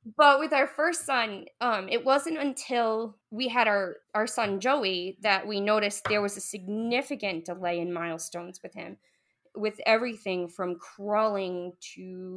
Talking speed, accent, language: 155 wpm, American, English